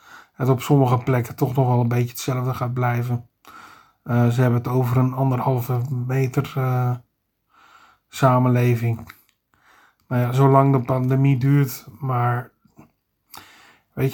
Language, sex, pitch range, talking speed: Dutch, male, 125-140 Hz, 125 wpm